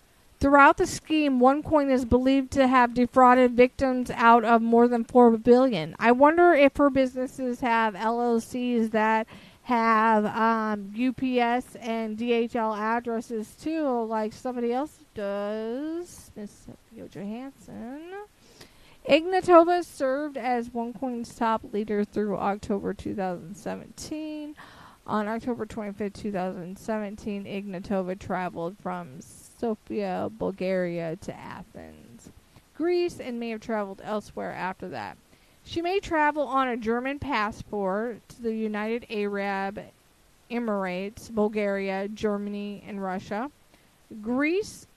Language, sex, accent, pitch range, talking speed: English, female, American, 210-265 Hz, 110 wpm